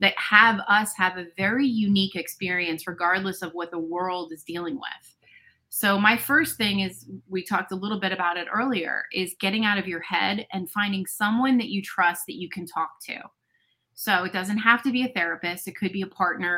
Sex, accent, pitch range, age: female, American, 175-205 Hz, 30-49